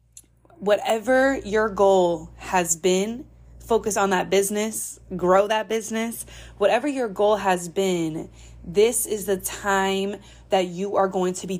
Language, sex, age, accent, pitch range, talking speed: English, female, 20-39, American, 170-205 Hz, 140 wpm